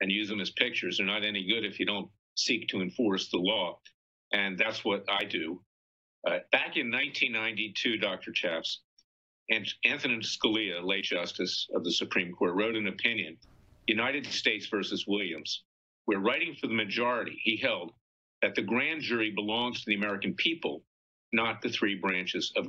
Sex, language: male, English